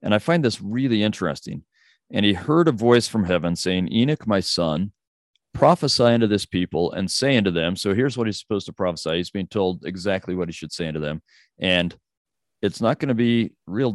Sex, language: male, English